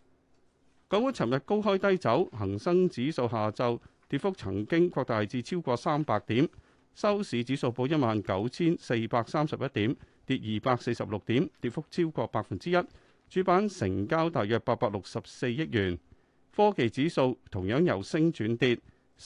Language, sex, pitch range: Chinese, male, 105-160 Hz